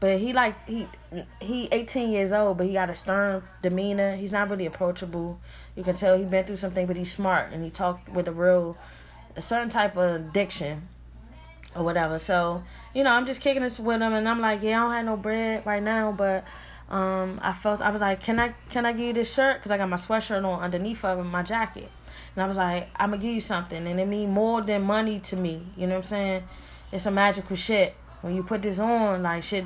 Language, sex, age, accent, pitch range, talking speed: English, female, 20-39, American, 180-215 Hz, 245 wpm